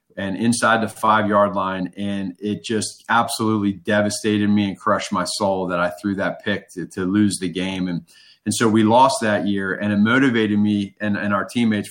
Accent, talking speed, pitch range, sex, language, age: American, 205 wpm, 100-115 Hz, male, English, 30-49